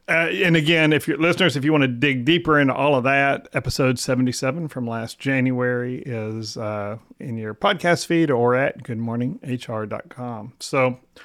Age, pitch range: 40-59, 125-145 Hz